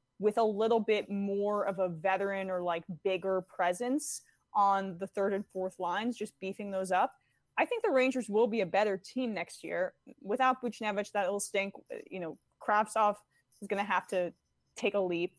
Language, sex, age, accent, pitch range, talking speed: English, female, 20-39, American, 180-220 Hz, 185 wpm